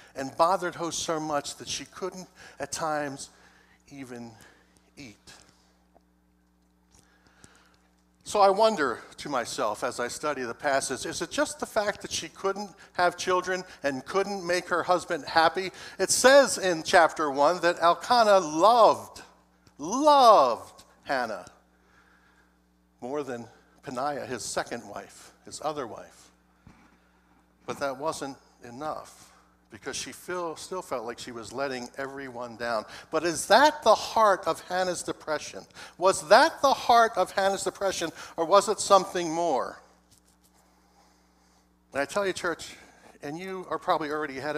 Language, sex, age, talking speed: English, male, 60-79, 135 wpm